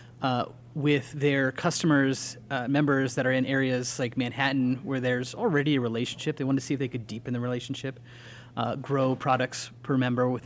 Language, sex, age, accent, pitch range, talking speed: English, male, 30-49, American, 120-135 Hz, 190 wpm